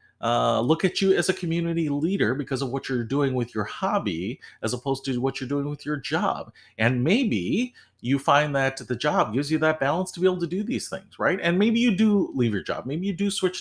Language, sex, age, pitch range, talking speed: English, male, 40-59, 100-150 Hz, 240 wpm